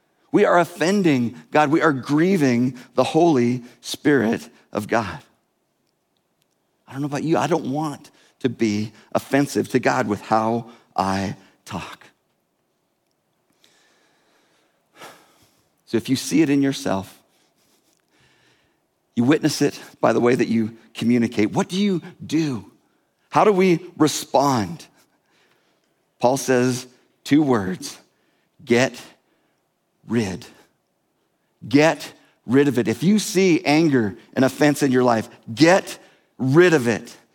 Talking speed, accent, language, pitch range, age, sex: 120 wpm, American, English, 125-185 Hz, 50-69, male